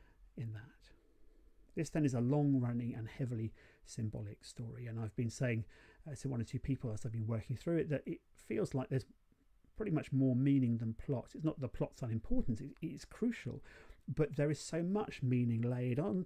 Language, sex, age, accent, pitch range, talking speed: English, male, 40-59, British, 115-145 Hz, 200 wpm